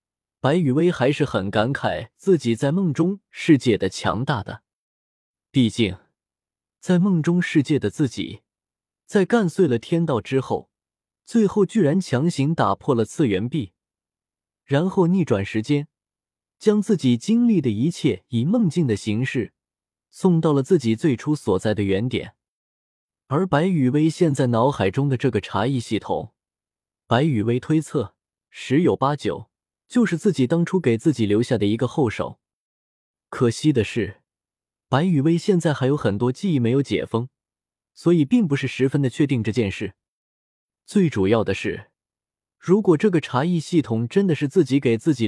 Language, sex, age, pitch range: Chinese, male, 20-39, 110-170 Hz